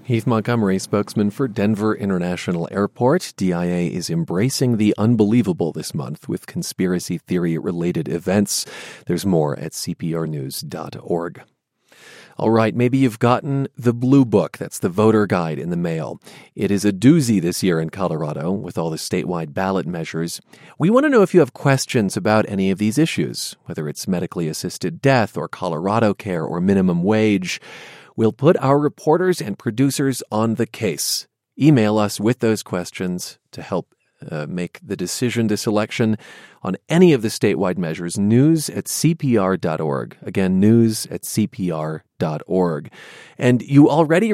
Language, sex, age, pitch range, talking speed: English, male, 40-59, 95-140 Hz, 155 wpm